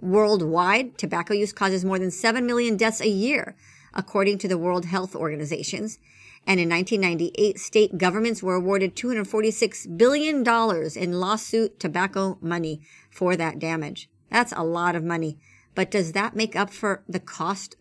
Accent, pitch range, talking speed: American, 180-225 Hz, 160 wpm